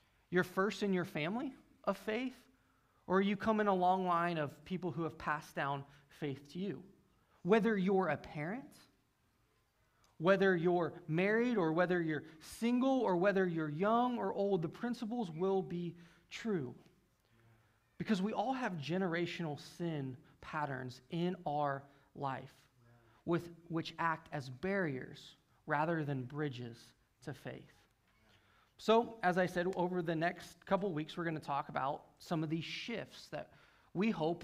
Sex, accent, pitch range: male, American, 140-185 Hz